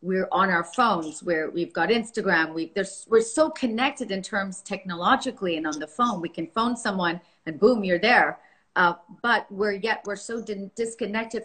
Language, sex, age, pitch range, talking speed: English, female, 40-59, 195-230 Hz, 185 wpm